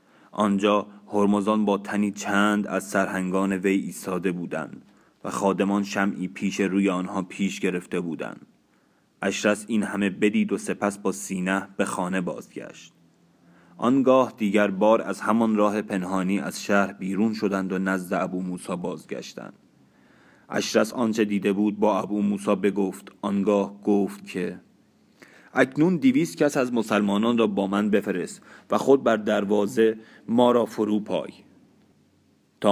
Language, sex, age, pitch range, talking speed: Persian, male, 30-49, 100-110 Hz, 140 wpm